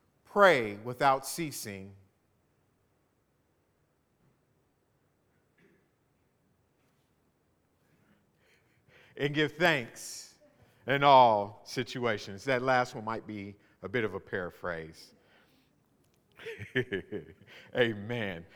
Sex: male